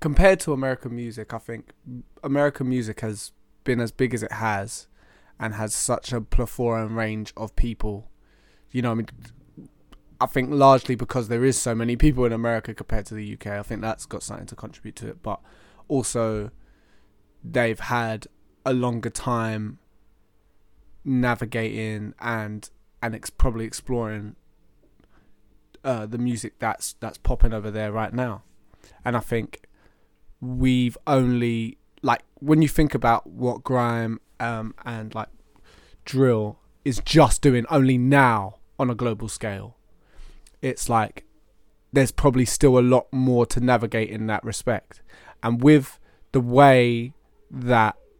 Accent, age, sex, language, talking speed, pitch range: British, 20-39, male, English, 145 wpm, 110-125 Hz